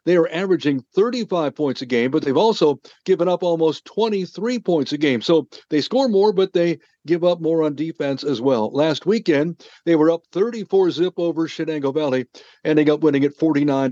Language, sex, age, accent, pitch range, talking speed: English, male, 50-69, American, 140-170 Hz, 195 wpm